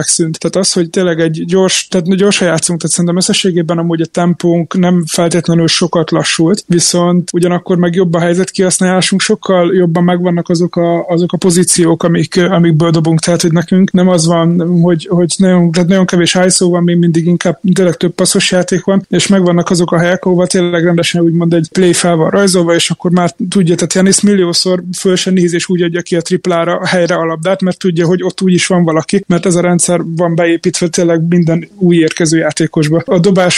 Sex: male